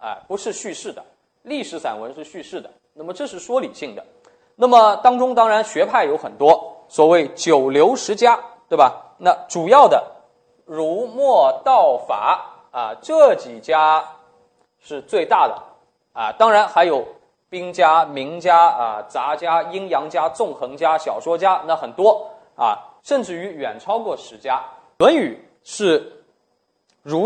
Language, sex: Chinese, male